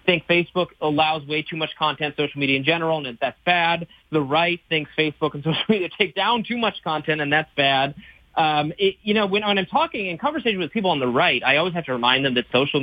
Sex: male